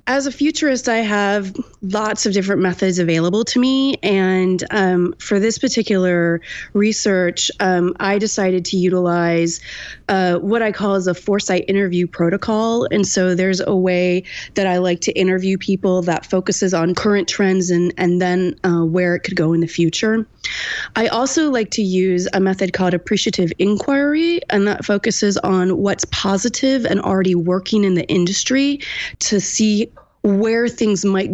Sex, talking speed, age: female, 165 wpm, 20-39